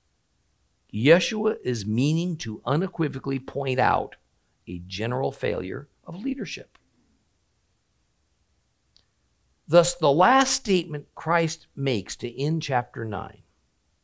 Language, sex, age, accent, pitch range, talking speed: English, male, 50-69, American, 110-185 Hz, 95 wpm